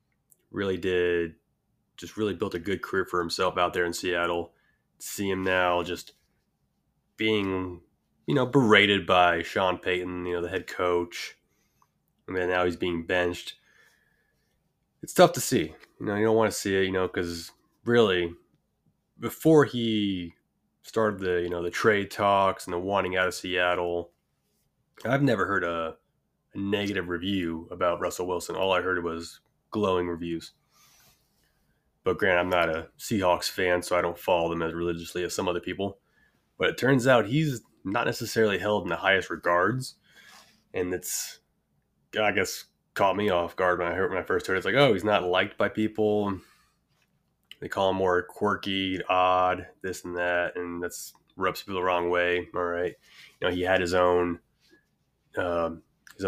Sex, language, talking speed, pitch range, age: male, English, 175 wpm, 85-95 Hz, 20-39